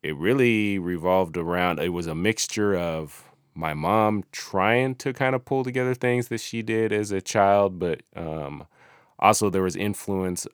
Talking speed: 170 wpm